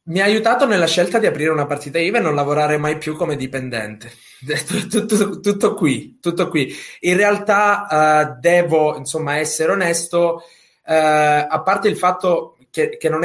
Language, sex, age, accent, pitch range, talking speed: Italian, male, 20-39, native, 135-170 Hz, 170 wpm